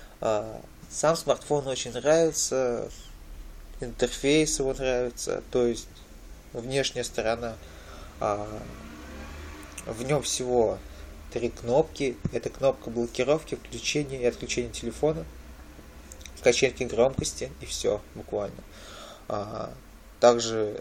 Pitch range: 100-125 Hz